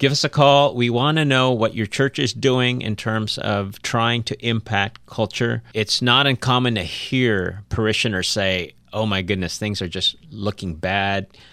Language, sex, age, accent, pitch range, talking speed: English, male, 30-49, American, 95-120 Hz, 180 wpm